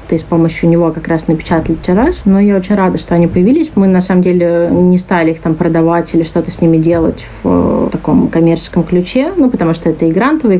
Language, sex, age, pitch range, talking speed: Russian, female, 30-49, 170-190 Hz, 220 wpm